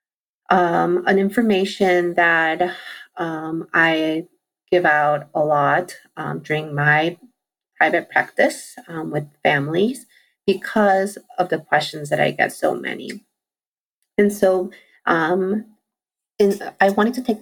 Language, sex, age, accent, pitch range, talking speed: English, female, 30-49, American, 165-210 Hz, 115 wpm